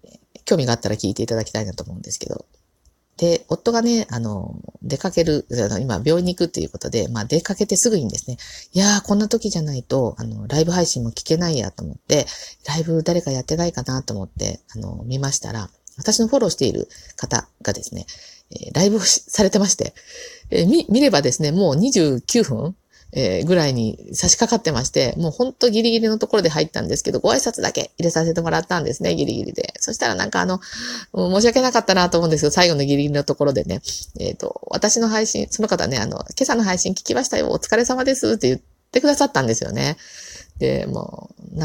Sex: female